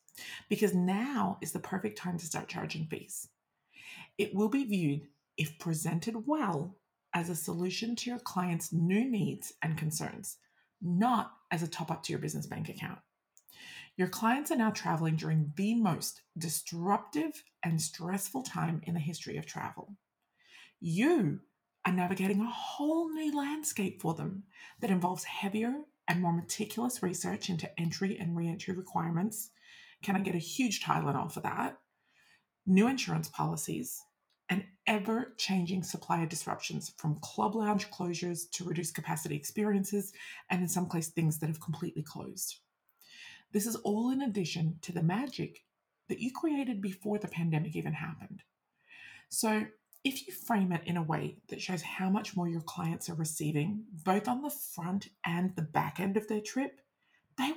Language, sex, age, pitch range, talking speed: English, female, 30-49, 170-220 Hz, 160 wpm